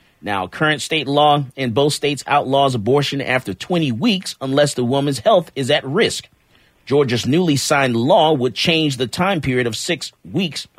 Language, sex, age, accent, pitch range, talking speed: English, male, 40-59, American, 110-145 Hz, 170 wpm